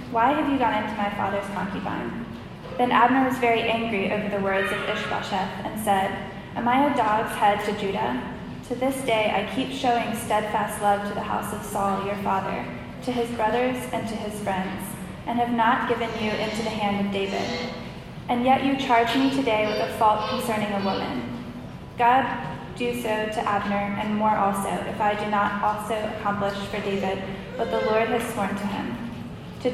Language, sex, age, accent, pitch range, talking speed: English, female, 10-29, American, 200-235 Hz, 190 wpm